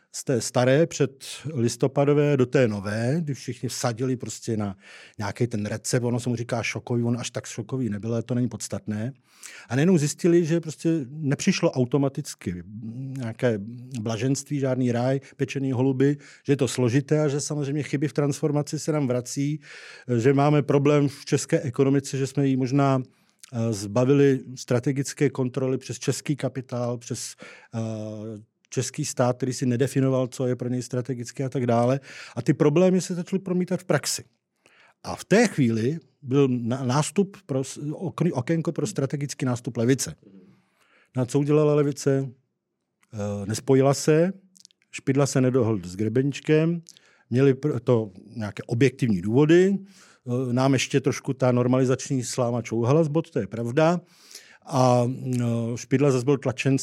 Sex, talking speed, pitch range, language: male, 145 wpm, 125-145 Hz, Czech